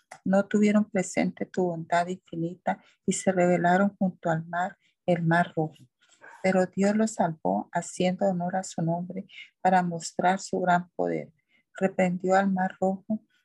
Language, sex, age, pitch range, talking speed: Spanish, female, 40-59, 170-195 Hz, 145 wpm